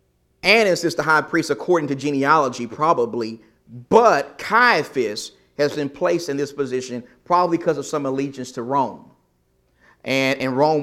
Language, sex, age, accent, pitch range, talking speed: English, male, 30-49, American, 125-175 Hz, 150 wpm